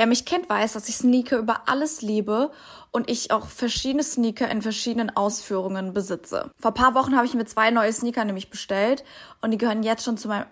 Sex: female